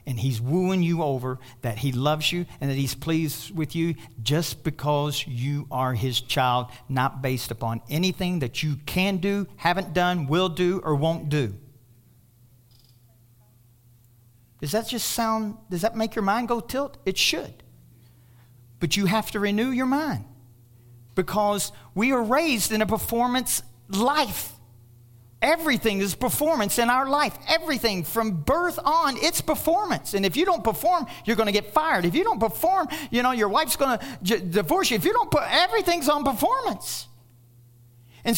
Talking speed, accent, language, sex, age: 165 wpm, American, English, male, 50-69